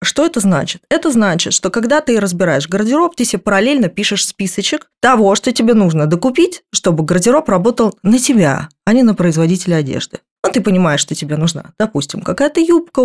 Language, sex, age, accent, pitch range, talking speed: Russian, female, 20-39, native, 175-255 Hz, 180 wpm